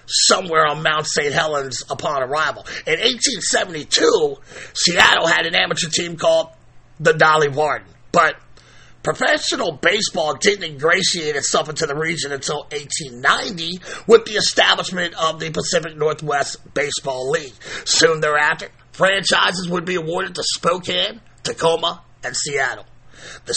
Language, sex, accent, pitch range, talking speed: English, male, American, 150-180 Hz, 125 wpm